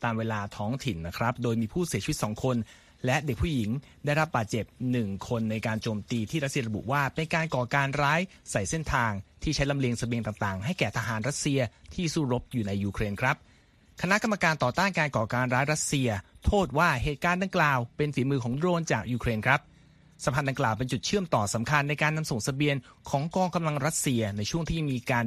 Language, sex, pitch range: Thai, male, 115-155 Hz